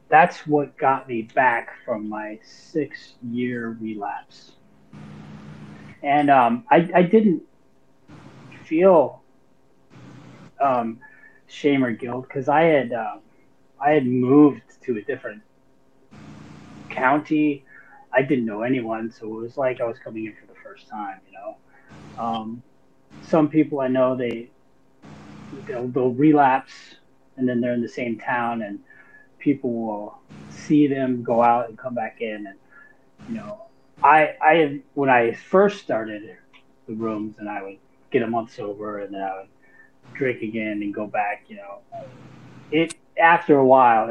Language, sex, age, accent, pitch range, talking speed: English, male, 30-49, American, 105-140 Hz, 150 wpm